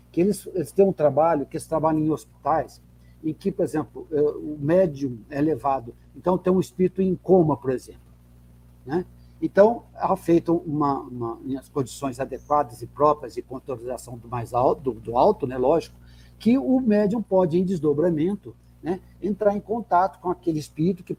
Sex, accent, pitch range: male, Brazilian, 135-190 Hz